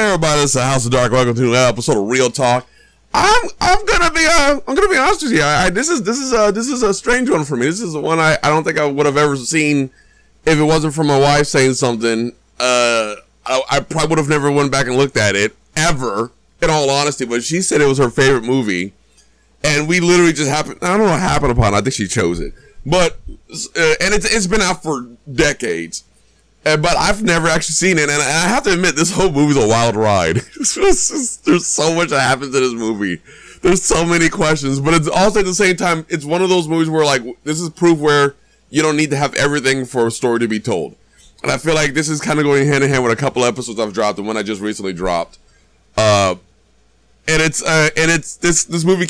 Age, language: 30-49, English